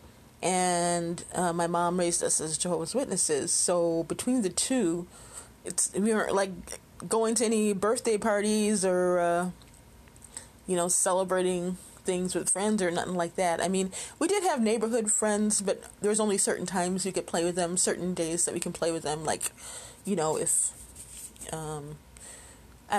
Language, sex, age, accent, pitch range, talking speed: English, female, 20-39, American, 170-215 Hz, 165 wpm